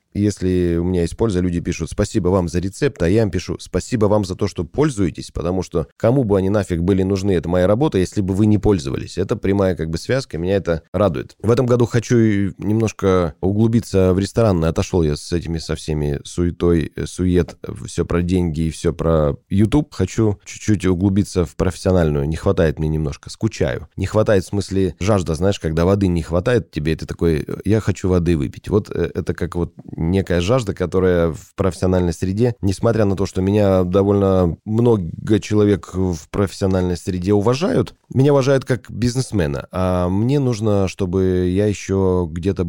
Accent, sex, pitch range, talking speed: native, male, 85-100 Hz, 185 wpm